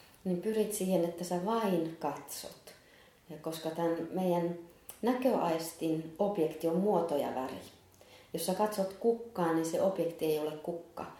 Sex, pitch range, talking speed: female, 155-195 Hz, 145 wpm